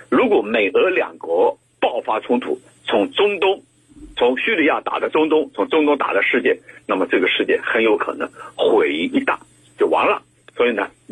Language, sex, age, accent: Chinese, male, 50-69, native